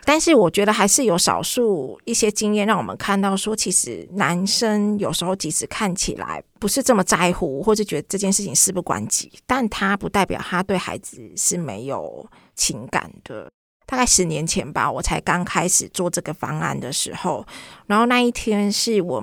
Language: Chinese